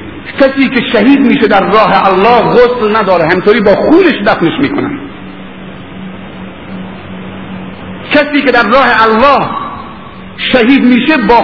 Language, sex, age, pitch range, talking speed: Persian, male, 50-69, 215-285 Hz, 115 wpm